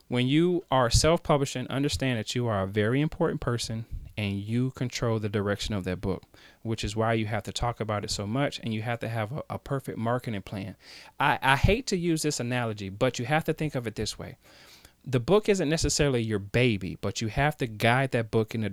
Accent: American